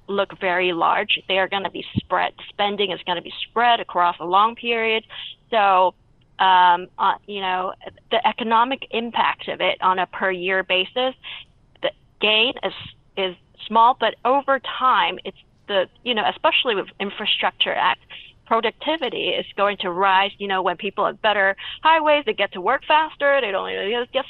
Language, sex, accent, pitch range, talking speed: English, female, American, 195-245 Hz, 180 wpm